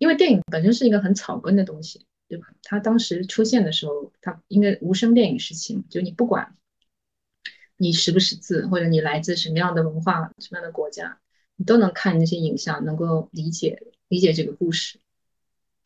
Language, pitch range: Chinese, 160-215 Hz